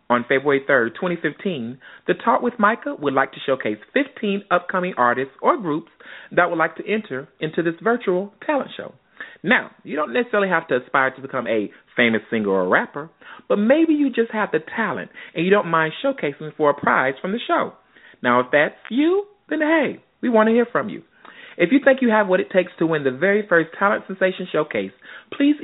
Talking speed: 205 wpm